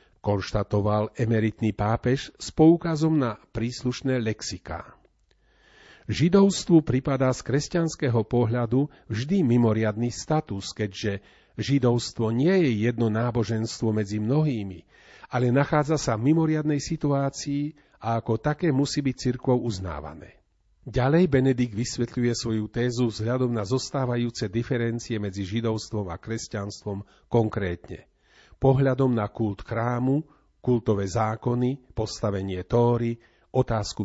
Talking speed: 105 wpm